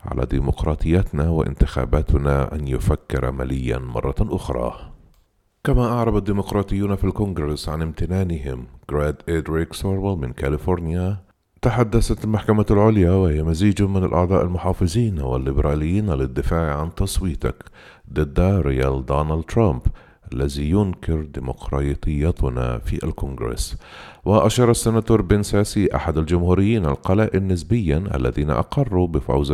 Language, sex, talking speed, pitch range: Arabic, male, 105 wpm, 70-100 Hz